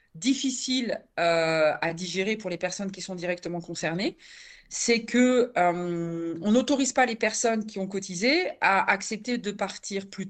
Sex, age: female, 40-59